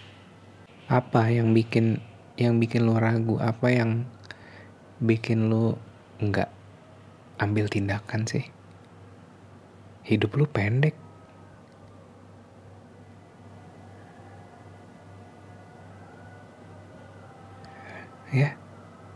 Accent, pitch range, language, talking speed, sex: native, 95-110 Hz, Indonesian, 60 wpm, male